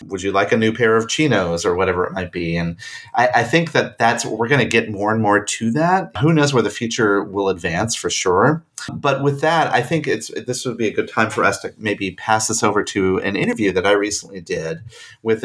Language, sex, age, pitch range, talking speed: English, male, 30-49, 95-130 Hz, 250 wpm